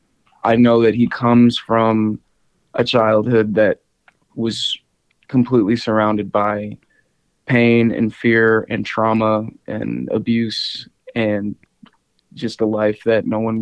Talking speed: 120 wpm